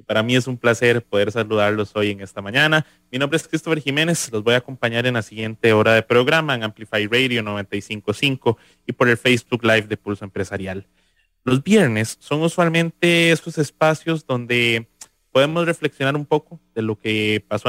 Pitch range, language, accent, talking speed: 105-140 Hz, English, Mexican, 180 wpm